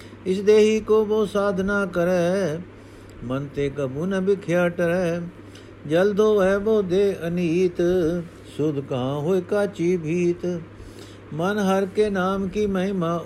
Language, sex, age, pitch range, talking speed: Punjabi, male, 50-69, 125-170 Hz, 120 wpm